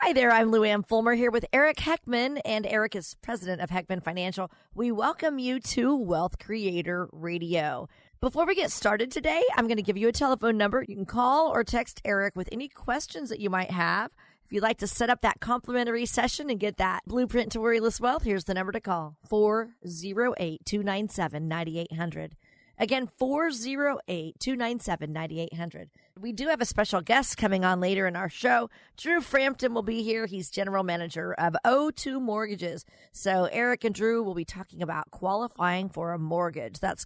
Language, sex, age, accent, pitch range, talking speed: English, female, 40-59, American, 180-240 Hz, 175 wpm